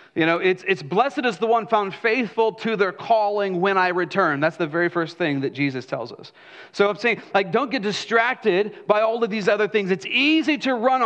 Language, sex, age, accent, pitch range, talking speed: English, male, 40-59, American, 140-200 Hz, 230 wpm